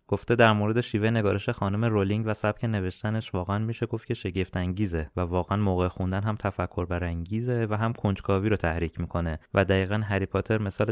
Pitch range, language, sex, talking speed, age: 90-110 Hz, Persian, male, 185 wpm, 20-39